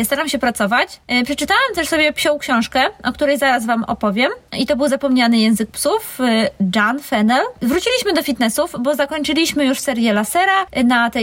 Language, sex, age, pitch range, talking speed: Polish, female, 20-39, 230-285 Hz, 165 wpm